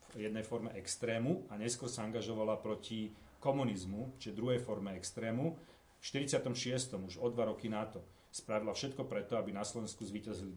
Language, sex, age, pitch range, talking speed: Slovak, male, 40-59, 105-125 Hz, 160 wpm